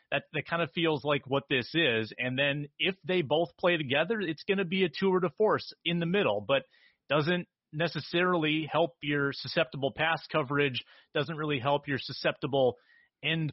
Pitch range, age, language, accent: 125-160 Hz, 30-49, English, American